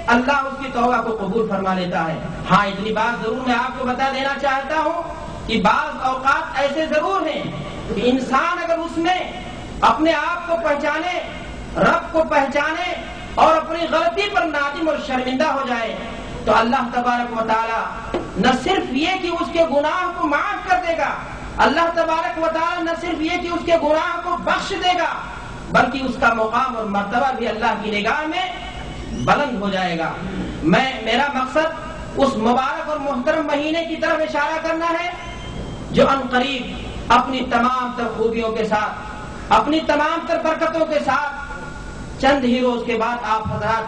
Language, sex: Urdu, male